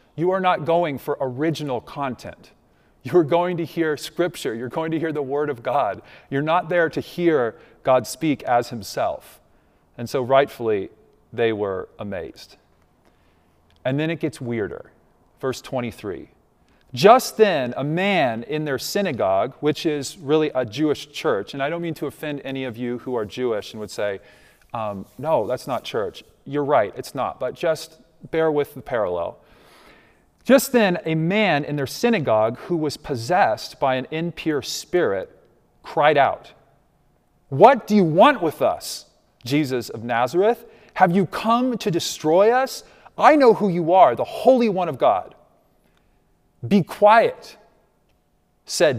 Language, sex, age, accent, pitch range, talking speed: English, male, 40-59, American, 125-180 Hz, 160 wpm